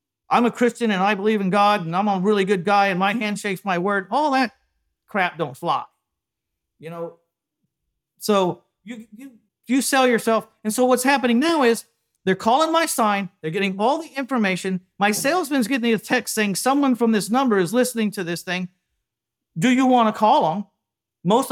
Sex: male